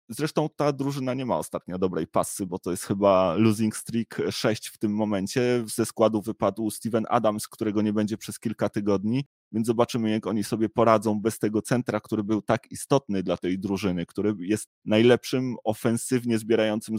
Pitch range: 105-120 Hz